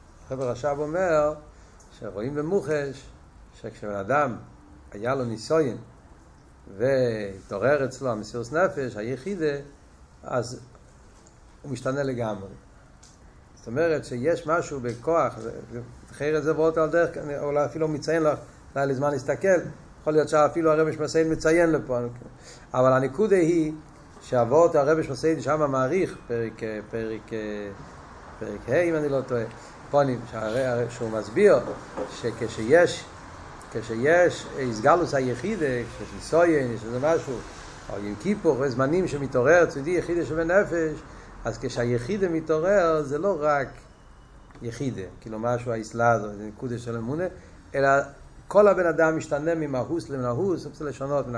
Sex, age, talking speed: male, 60-79, 125 wpm